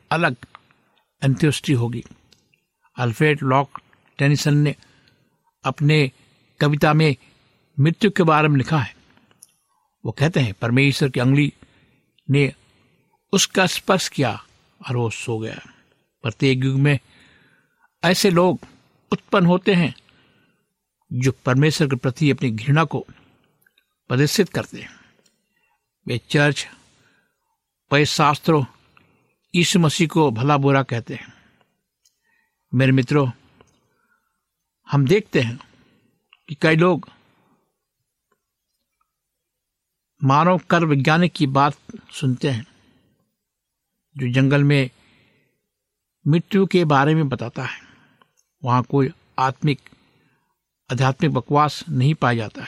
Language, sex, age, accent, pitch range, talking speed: Hindi, male, 60-79, native, 130-160 Hz, 105 wpm